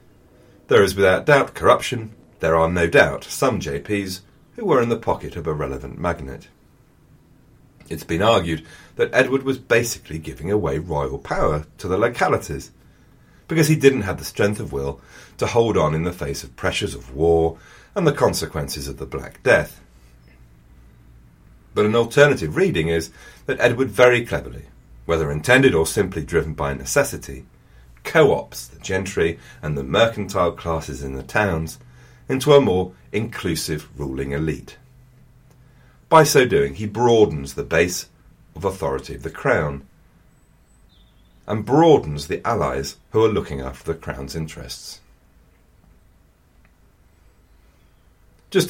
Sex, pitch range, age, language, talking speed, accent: male, 70-115 Hz, 40-59, English, 140 wpm, British